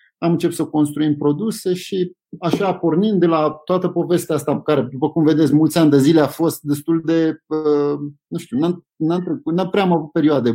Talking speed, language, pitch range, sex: 180 wpm, Romanian, 130-165 Hz, male